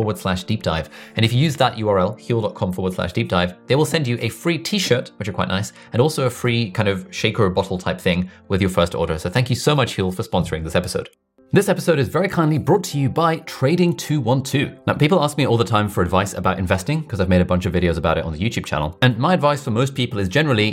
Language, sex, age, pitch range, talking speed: English, male, 30-49, 95-130 Hz, 265 wpm